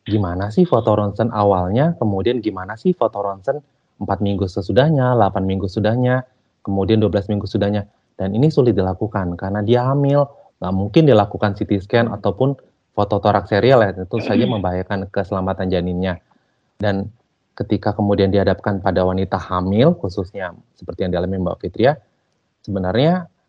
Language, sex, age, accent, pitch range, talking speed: Indonesian, male, 30-49, native, 95-115 Hz, 145 wpm